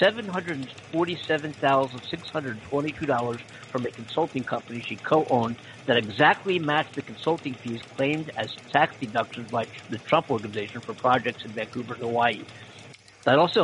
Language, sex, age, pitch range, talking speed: English, male, 50-69, 120-155 Hz, 125 wpm